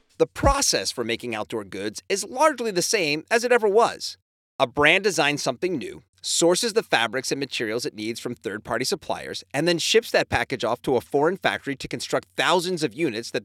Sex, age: male, 30-49